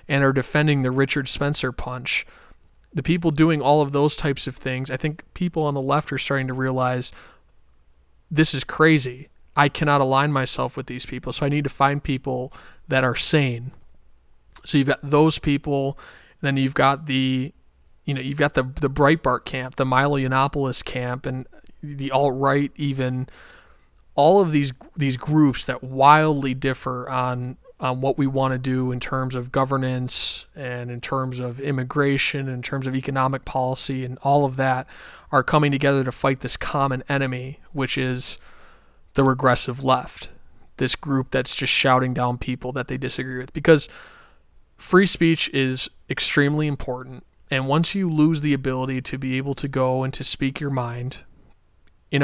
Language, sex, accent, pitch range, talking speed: English, male, American, 130-145 Hz, 175 wpm